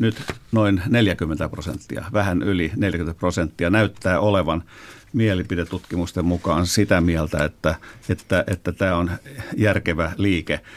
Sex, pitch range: male, 90-110 Hz